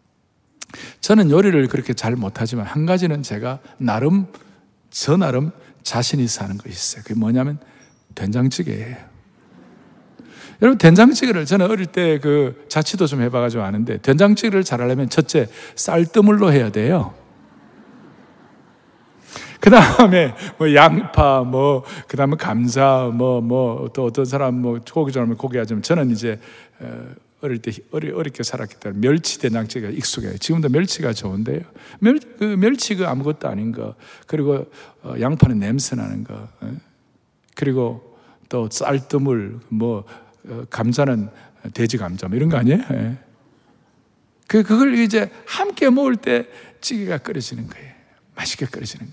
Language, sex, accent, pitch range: Korean, male, native, 115-160 Hz